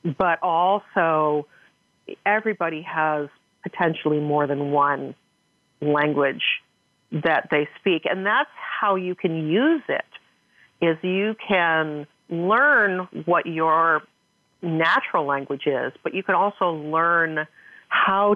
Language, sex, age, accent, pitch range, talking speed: English, female, 40-59, American, 150-180 Hz, 110 wpm